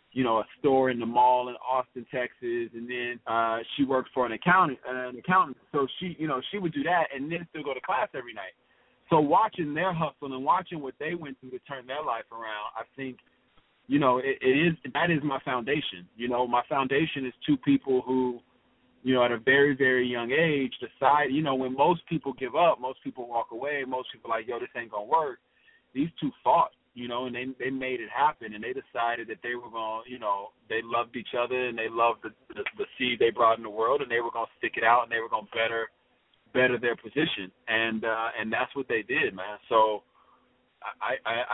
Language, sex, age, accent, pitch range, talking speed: English, male, 30-49, American, 115-140 Hz, 235 wpm